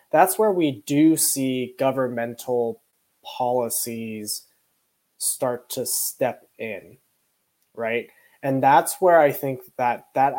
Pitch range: 125-145 Hz